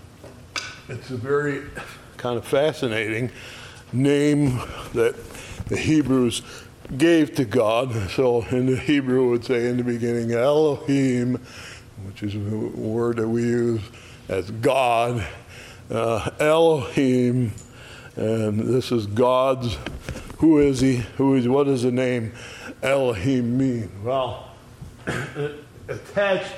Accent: American